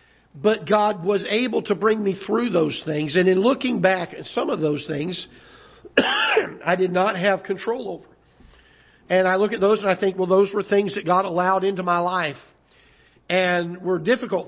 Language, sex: English, male